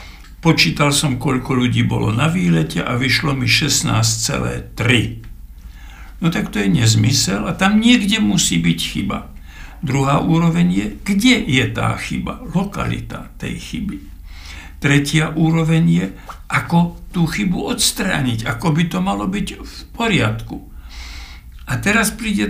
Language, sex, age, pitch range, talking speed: Slovak, male, 60-79, 100-165 Hz, 130 wpm